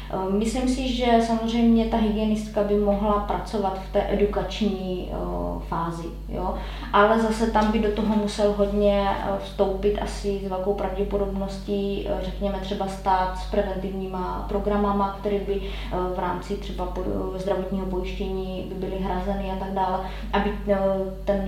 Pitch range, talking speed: 190-210 Hz, 135 wpm